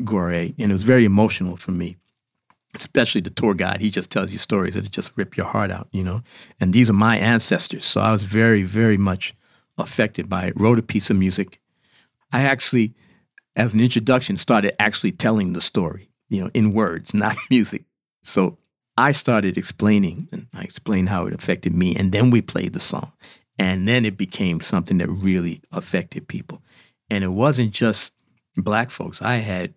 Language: English